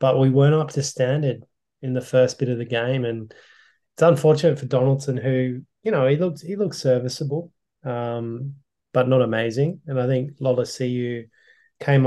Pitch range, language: 120-140 Hz, English